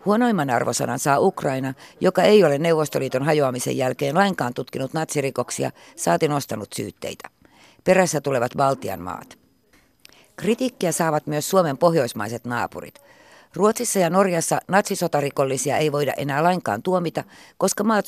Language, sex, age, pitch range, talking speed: Finnish, female, 60-79, 140-185 Hz, 125 wpm